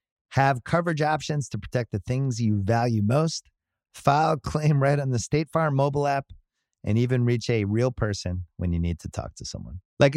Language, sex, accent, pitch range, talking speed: English, male, American, 100-140 Hz, 200 wpm